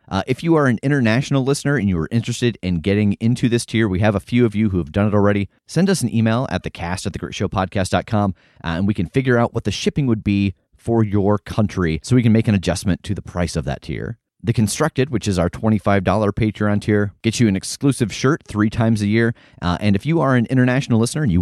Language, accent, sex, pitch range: English, American, male, 90-120 Hz